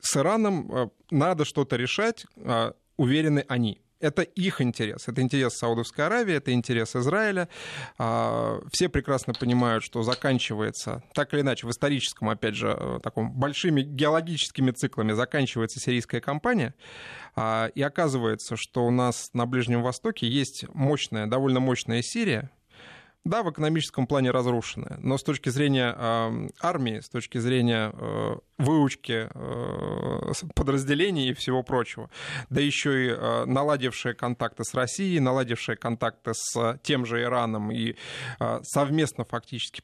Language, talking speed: Russian, 125 wpm